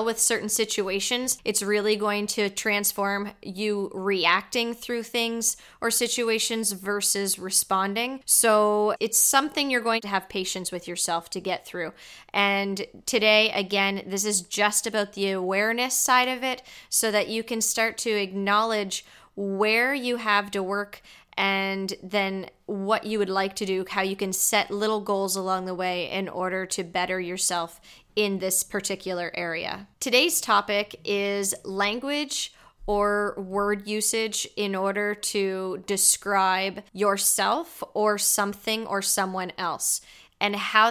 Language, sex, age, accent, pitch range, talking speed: English, female, 20-39, American, 195-220 Hz, 145 wpm